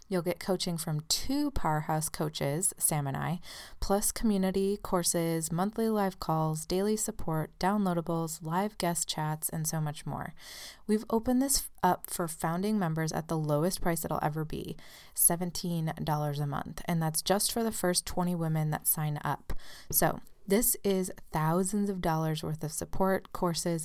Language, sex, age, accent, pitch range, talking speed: English, female, 20-39, American, 160-195 Hz, 160 wpm